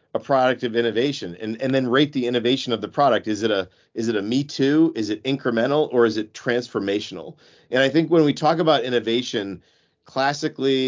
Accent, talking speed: American, 200 wpm